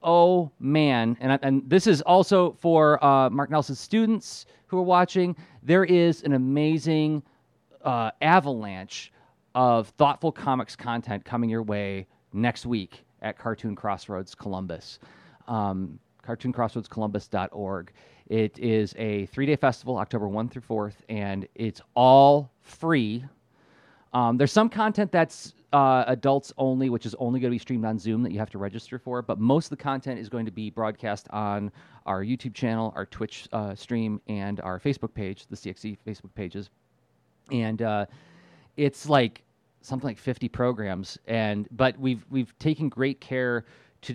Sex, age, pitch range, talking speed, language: male, 30-49, 105-135 Hz, 155 wpm, English